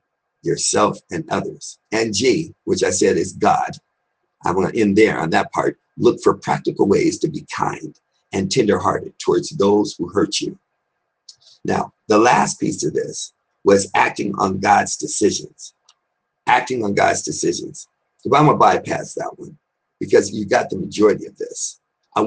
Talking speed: 165 wpm